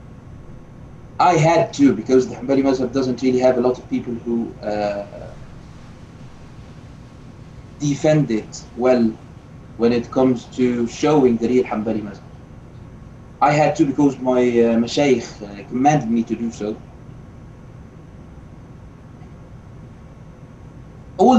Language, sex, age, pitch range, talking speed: English, male, 30-49, 125-145 Hz, 115 wpm